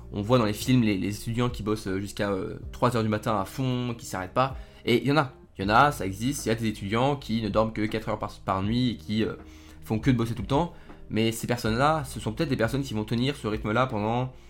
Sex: male